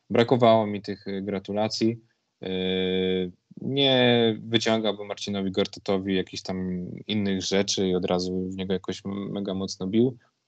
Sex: male